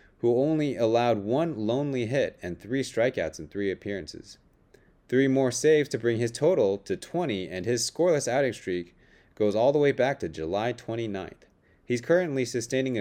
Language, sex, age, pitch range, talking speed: English, male, 30-49, 105-140 Hz, 170 wpm